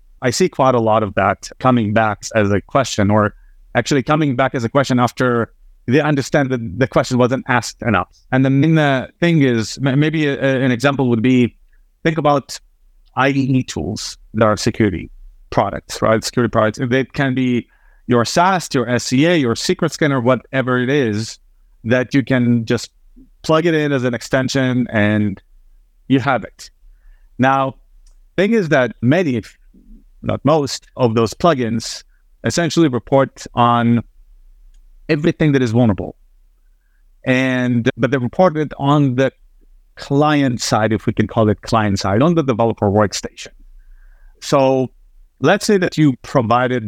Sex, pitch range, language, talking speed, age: male, 110-140 Hz, English, 155 wpm, 30-49